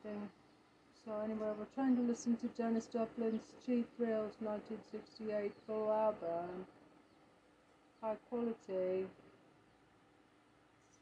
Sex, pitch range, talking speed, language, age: female, 205-240 Hz, 95 wpm, English, 40-59